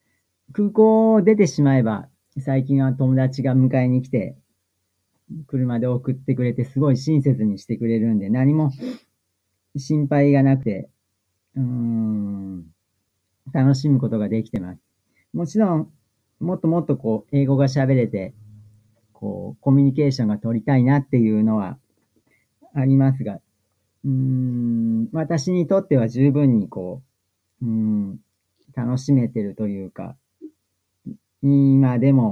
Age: 40-59